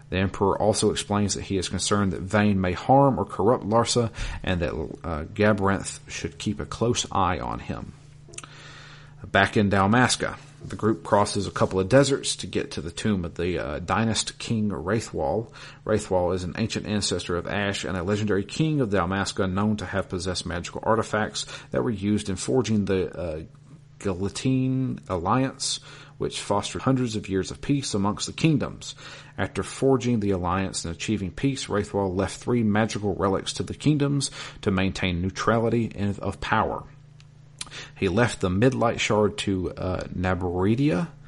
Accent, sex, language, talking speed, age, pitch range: American, male, English, 165 wpm, 40-59, 95-135 Hz